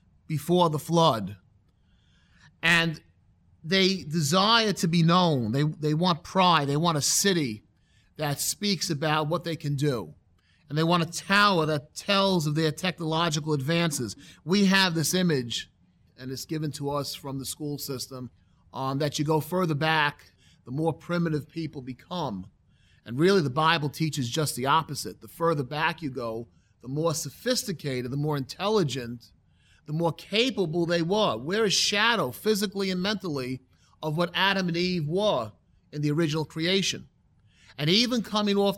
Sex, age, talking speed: male, 30-49, 160 wpm